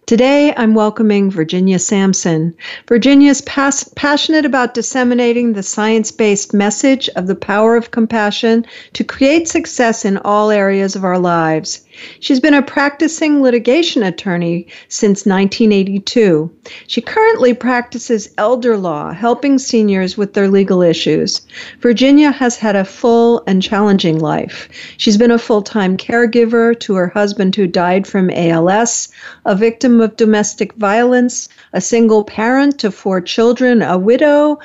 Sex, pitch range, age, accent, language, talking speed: female, 190-245 Hz, 50-69, American, English, 135 wpm